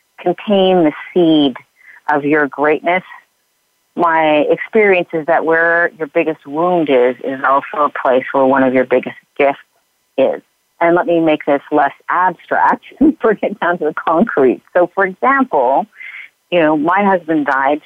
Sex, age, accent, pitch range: female, 40-59, American, 140-180 Hz